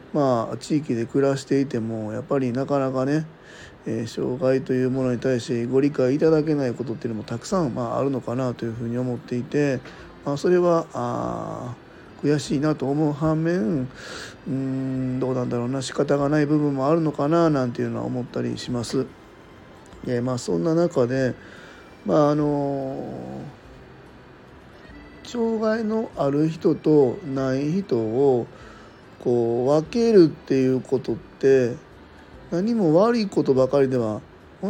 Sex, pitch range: male, 125-150 Hz